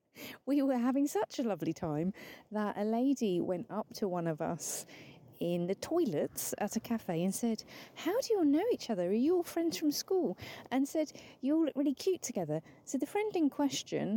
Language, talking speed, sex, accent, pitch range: English, 210 wpm, female, British, 175-290 Hz